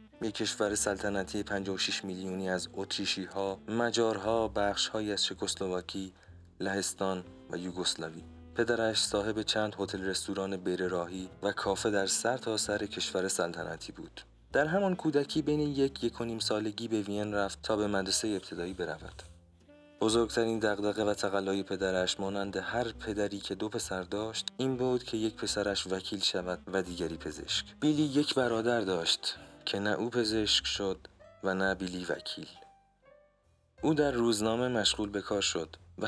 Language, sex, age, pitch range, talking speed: Persian, male, 30-49, 95-115 Hz, 150 wpm